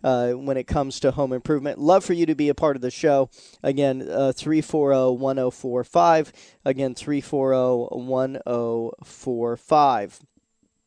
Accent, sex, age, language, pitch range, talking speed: American, male, 40-59, English, 130-160 Hz, 125 wpm